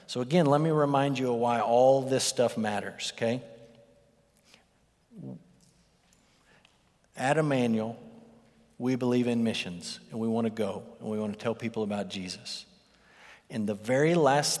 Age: 50-69